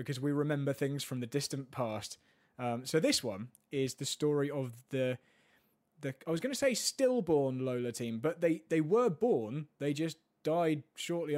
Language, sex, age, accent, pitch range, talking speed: English, male, 20-39, British, 120-160 Hz, 185 wpm